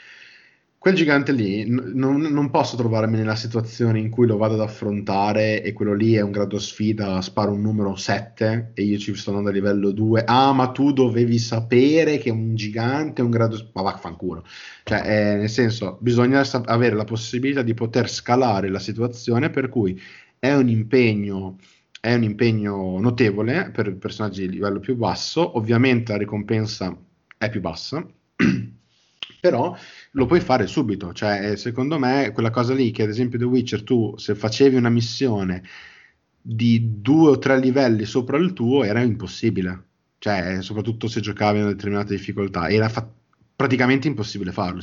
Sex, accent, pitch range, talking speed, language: male, native, 100-125 Hz, 165 wpm, Italian